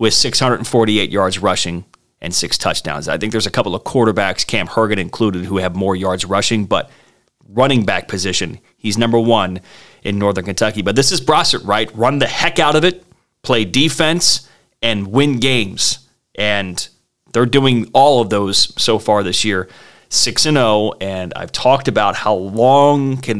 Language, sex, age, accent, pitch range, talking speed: English, male, 30-49, American, 105-135 Hz, 175 wpm